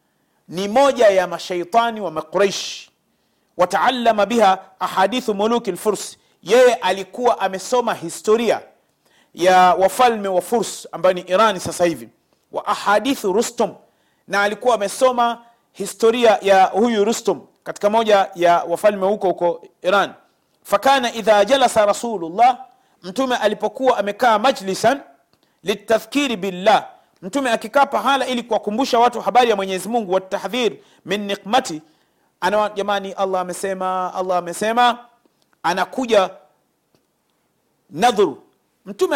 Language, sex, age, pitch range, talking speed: Swahili, male, 40-59, 185-235 Hz, 110 wpm